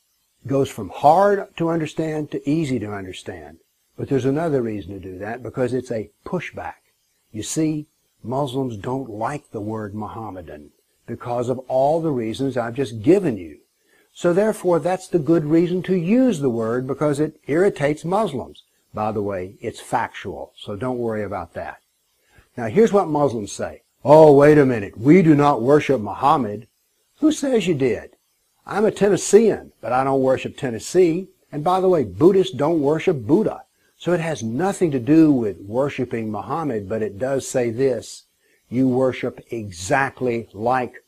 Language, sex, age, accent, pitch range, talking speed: English, male, 60-79, American, 120-160 Hz, 165 wpm